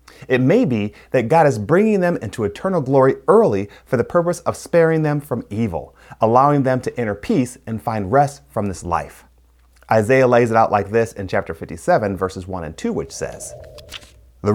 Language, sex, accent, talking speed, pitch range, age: English, male, American, 195 wpm, 95-135 Hz, 30-49